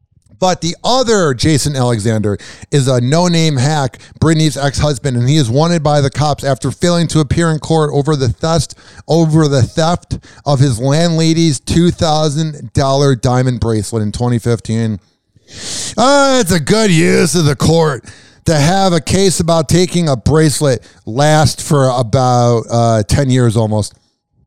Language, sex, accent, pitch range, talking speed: English, male, American, 130-180 Hz, 140 wpm